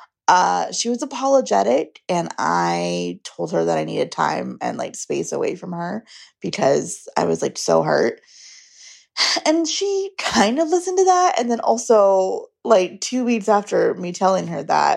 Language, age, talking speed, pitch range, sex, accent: English, 20-39, 170 wpm, 160-250 Hz, female, American